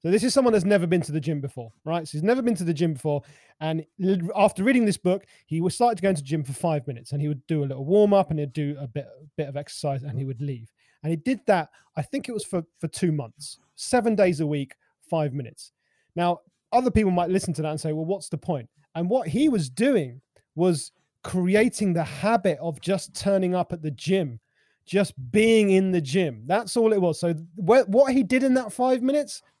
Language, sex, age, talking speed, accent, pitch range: English, male, 30-49, 245 wpm, British, 150-195 Hz